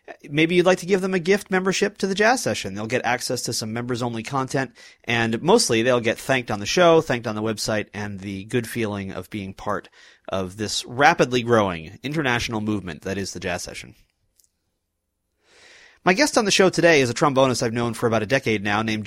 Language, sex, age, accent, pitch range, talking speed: English, male, 30-49, American, 105-150 Hz, 210 wpm